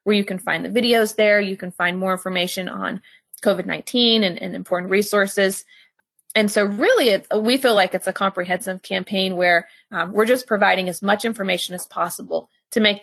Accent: American